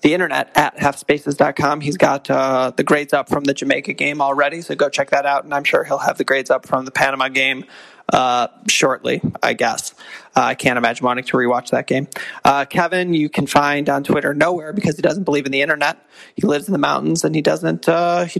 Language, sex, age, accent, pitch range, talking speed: English, male, 30-49, American, 145-180 Hz, 230 wpm